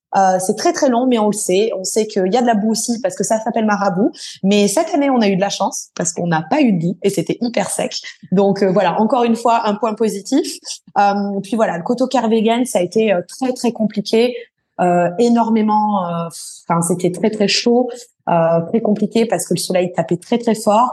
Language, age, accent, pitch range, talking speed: French, 20-39, French, 195-250 Hz, 240 wpm